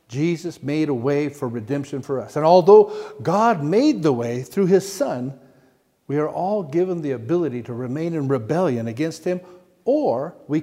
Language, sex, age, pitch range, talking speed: English, male, 60-79, 120-165 Hz, 175 wpm